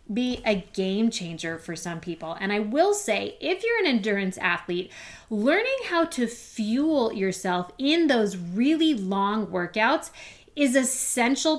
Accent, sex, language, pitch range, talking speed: American, female, English, 195-275 Hz, 145 wpm